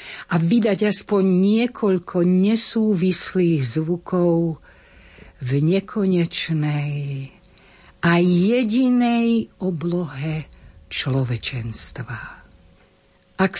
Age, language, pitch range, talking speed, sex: 60-79, Slovak, 155-195 Hz, 55 wpm, female